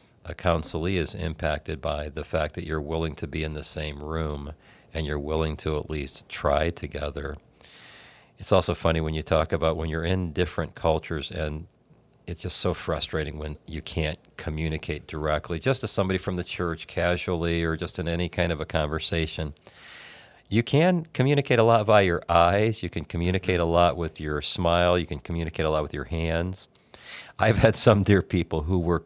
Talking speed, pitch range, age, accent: 190 wpm, 80-100 Hz, 40-59, American